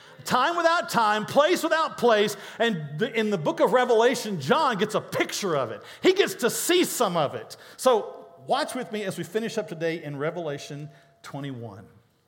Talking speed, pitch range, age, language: 180 wpm, 140-215 Hz, 50-69, English